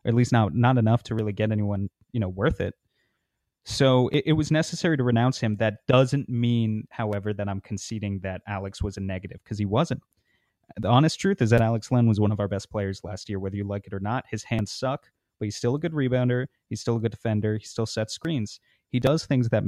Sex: male